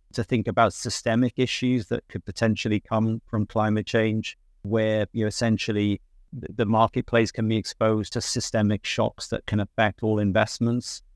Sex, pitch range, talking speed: male, 100-115 Hz, 155 wpm